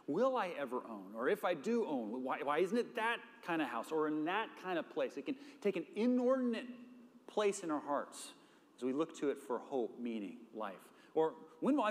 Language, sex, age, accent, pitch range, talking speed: English, male, 30-49, American, 155-255 Hz, 220 wpm